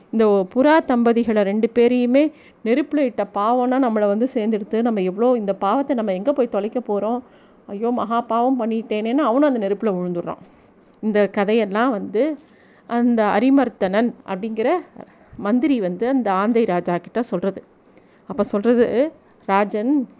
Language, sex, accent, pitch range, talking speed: Tamil, female, native, 215-265 Hz, 130 wpm